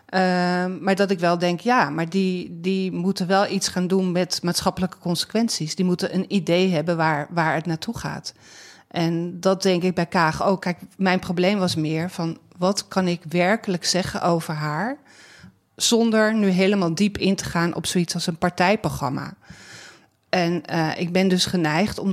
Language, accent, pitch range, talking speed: Dutch, Dutch, 170-195 Hz, 185 wpm